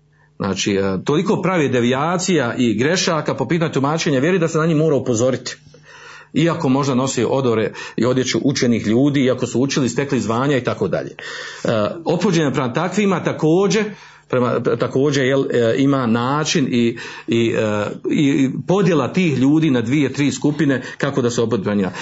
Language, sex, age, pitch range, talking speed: Croatian, male, 50-69, 125-155 Hz, 160 wpm